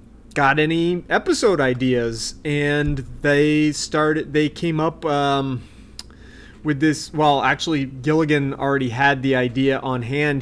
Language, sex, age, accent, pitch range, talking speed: English, male, 30-49, American, 125-150 Hz, 125 wpm